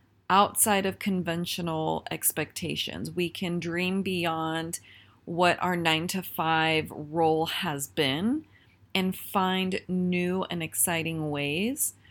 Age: 30-49